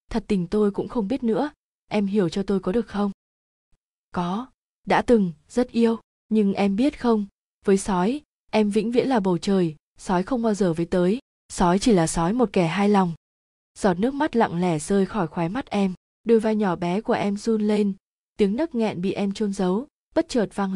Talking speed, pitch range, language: 215 wpm, 185-225 Hz, Vietnamese